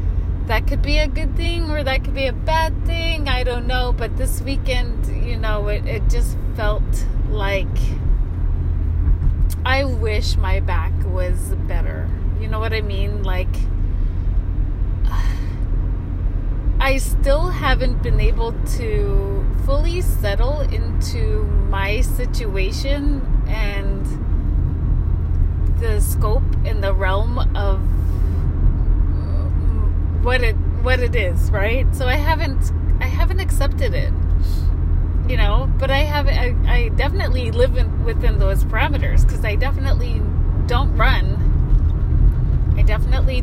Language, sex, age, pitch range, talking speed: English, female, 30-49, 80-90 Hz, 120 wpm